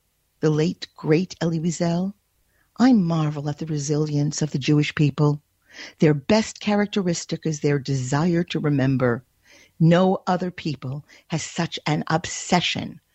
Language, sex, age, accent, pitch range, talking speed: English, female, 50-69, American, 150-245 Hz, 130 wpm